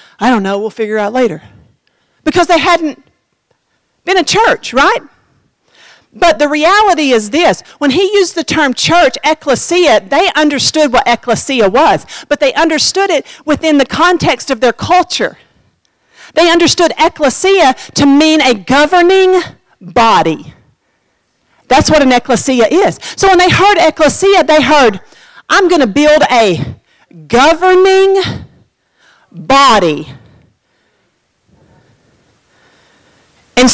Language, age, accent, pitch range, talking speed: English, 50-69, American, 245-345 Hz, 125 wpm